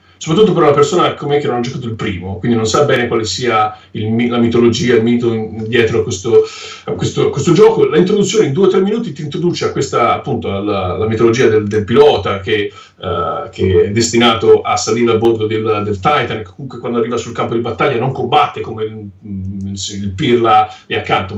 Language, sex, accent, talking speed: Italian, male, native, 205 wpm